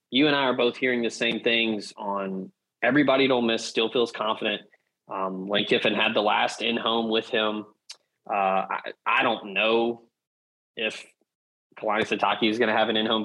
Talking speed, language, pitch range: 180 wpm, English, 105-120 Hz